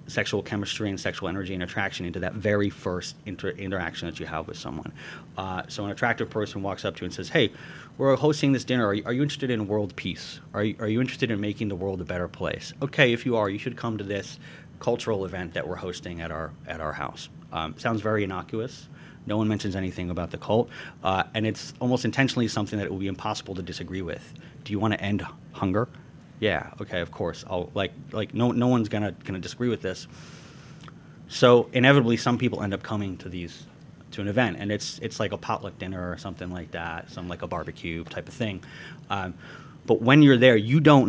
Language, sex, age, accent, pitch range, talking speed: English, male, 30-49, American, 95-125 Hz, 230 wpm